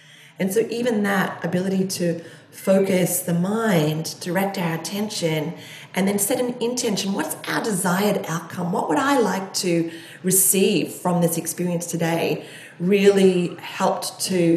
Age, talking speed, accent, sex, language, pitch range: 30-49, 140 wpm, Australian, female, English, 165-195 Hz